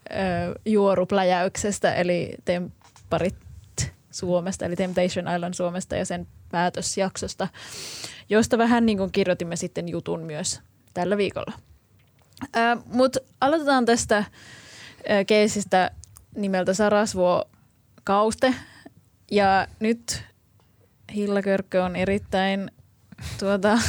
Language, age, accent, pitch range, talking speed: Finnish, 20-39, native, 180-210 Hz, 85 wpm